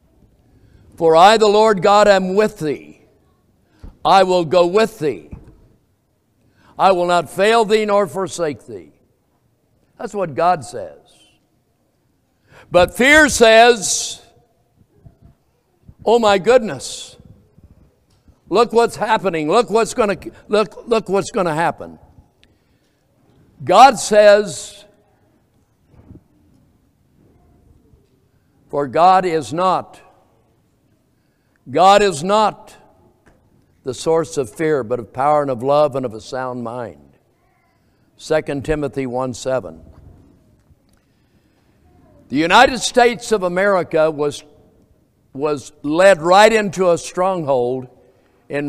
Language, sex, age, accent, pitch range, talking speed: English, male, 60-79, American, 130-210 Hz, 100 wpm